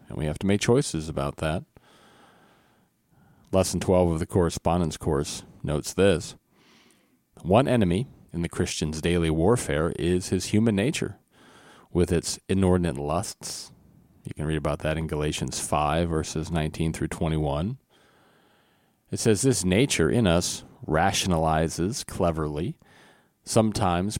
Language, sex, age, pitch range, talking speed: English, male, 40-59, 80-100 Hz, 130 wpm